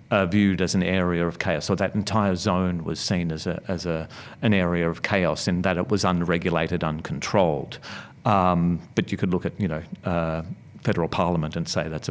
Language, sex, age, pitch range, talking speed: English, male, 40-59, 90-115 Hz, 205 wpm